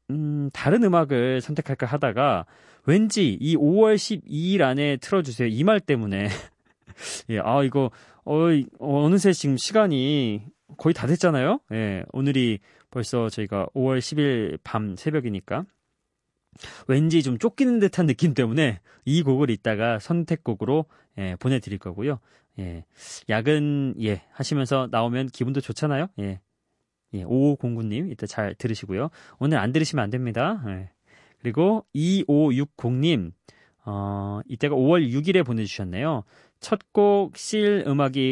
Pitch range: 110-155 Hz